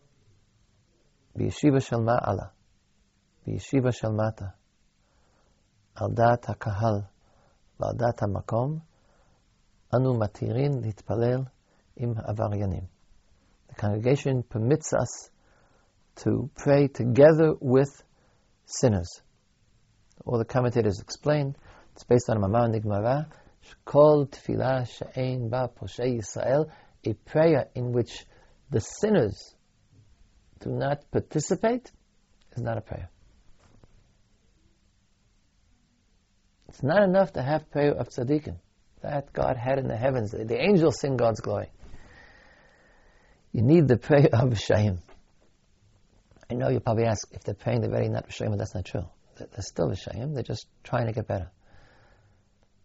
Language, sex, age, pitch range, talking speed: English, male, 40-59, 100-130 Hz, 95 wpm